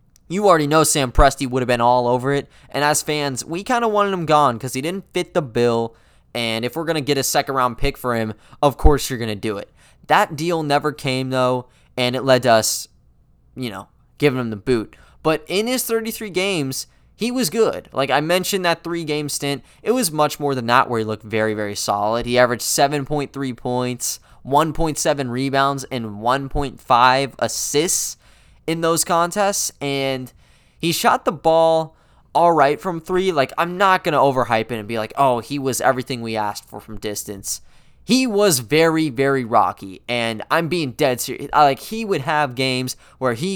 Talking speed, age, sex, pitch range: 195 wpm, 10-29, male, 120-165 Hz